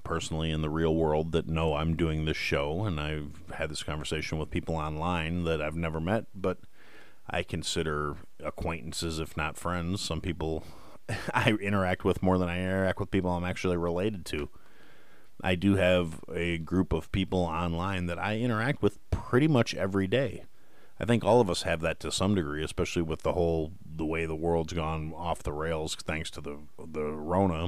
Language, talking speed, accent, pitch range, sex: English, 190 wpm, American, 80-100 Hz, male